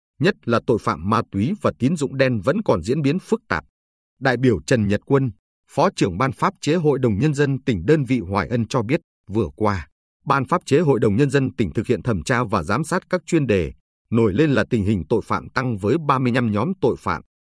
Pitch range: 100-140 Hz